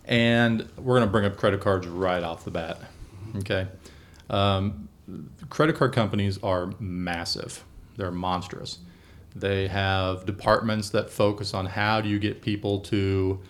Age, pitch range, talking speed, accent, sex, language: 40-59, 95-110 Hz, 145 wpm, American, male, English